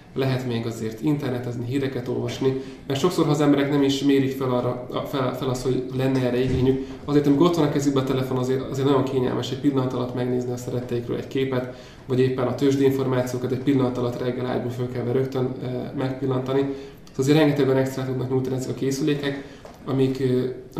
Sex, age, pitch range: male, 20-39, 125-140 Hz